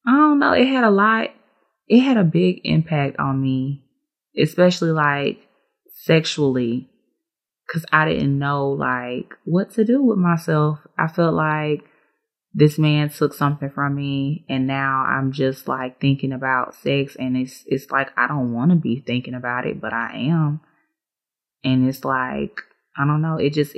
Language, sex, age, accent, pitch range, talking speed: English, female, 20-39, American, 130-160 Hz, 170 wpm